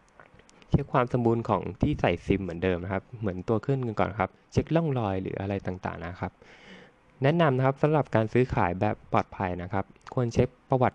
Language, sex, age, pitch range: Thai, male, 20-39, 95-125 Hz